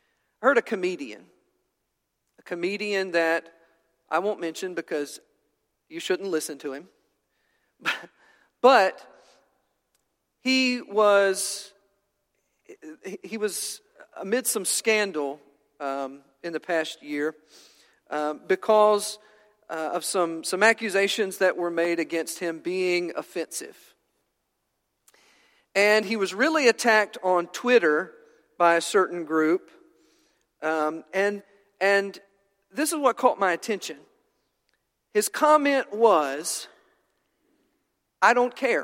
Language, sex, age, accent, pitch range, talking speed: English, male, 40-59, American, 165-235 Hz, 105 wpm